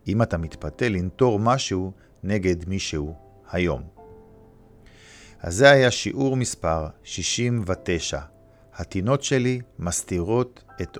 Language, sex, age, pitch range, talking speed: Hebrew, male, 50-69, 90-110 Hz, 100 wpm